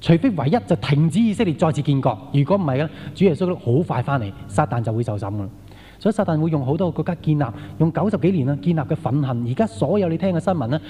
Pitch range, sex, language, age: 125-170 Hz, male, Chinese, 20-39